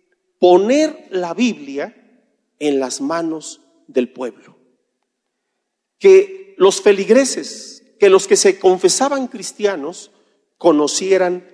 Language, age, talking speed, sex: Spanish, 40-59, 95 wpm, male